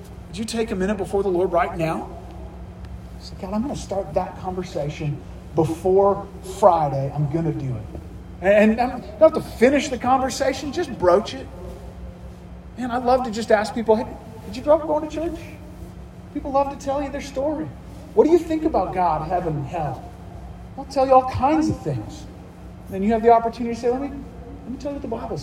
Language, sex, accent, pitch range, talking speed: English, male, American, 150-220 Hz, 215 wpm